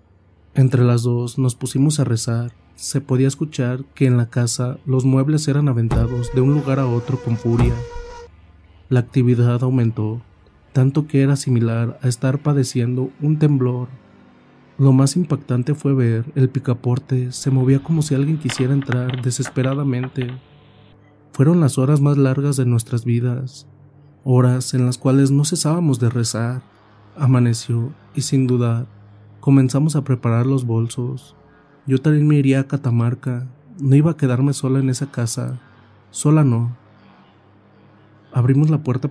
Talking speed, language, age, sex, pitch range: 145 wpm, Spanish, 30-49, male, 120-135 Hz